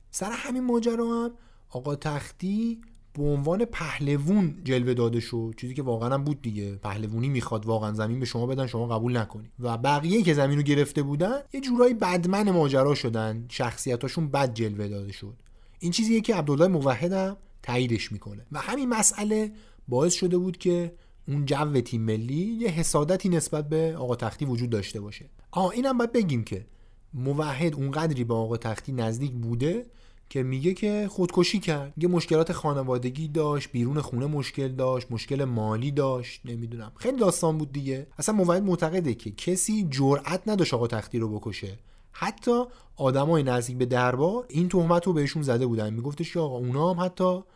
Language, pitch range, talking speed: Persian, 115-175 Hz, 165 wpm